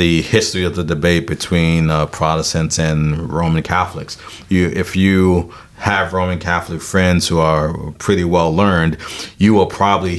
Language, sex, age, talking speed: English, male, 40-59, 155 wpm